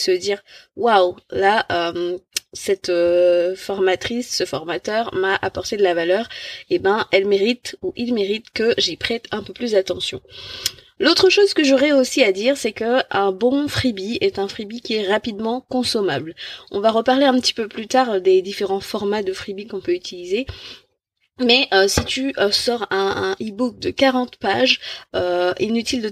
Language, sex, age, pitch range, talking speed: French, female, 20-39, 190-240 Hz, 175 wpm